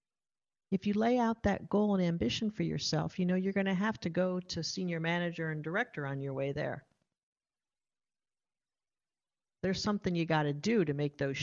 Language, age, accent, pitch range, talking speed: English, 50-69, American, 145-190 Hz, 190 wpm